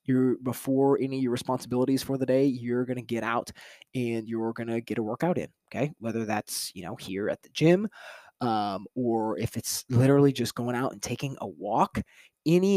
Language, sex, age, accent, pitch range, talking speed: English, male, 20-39, American, 120-140 Hz, 200 wpm